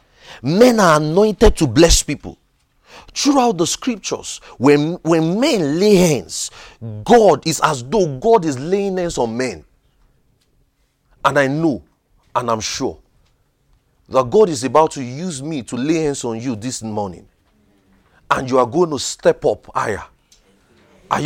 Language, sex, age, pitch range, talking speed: English, male, 40-59, 140-210 Hz, 150 wpm